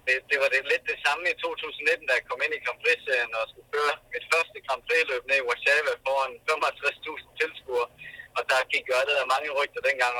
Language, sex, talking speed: Danish, male, 210 wpm